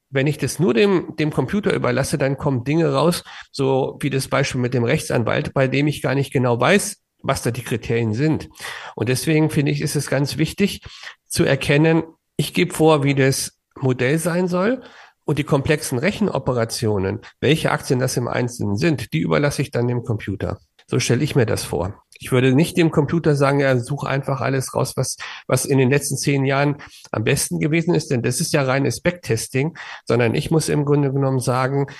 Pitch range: 125-150 Hz